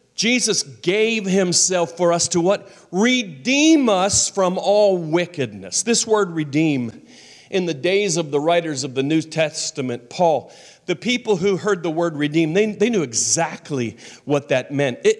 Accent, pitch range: American, 140-210 Hz